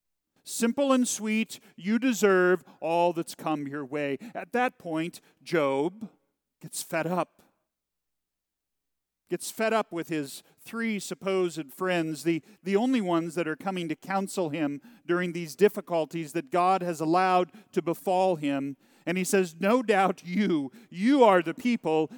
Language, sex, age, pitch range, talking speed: English, male, 40-59, 120-185 Hz, 150 wpm